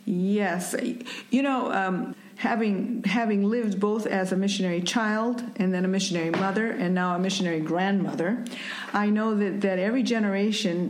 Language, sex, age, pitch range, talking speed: English, female, 50-69, 180-220 Hz, 155 wpm